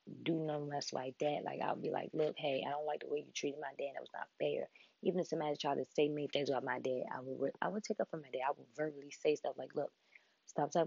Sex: female